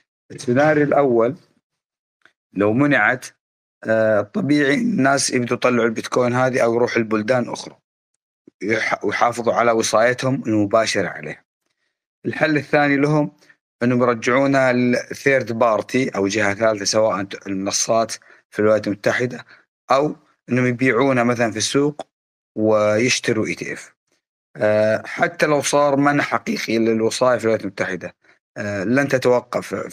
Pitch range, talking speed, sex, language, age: 110-130 Hz, 105 wpm, male, Arabic, 30-49